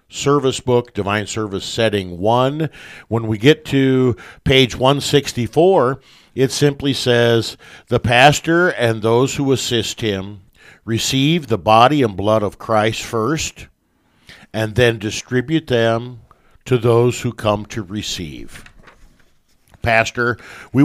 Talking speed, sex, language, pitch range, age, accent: 120 wpm, male, English, 105-125 Hz, 50-69, American